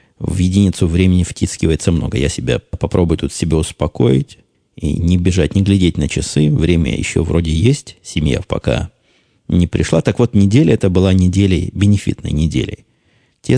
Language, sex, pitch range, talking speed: Russian, male, 85-105 Hz, 155 wpm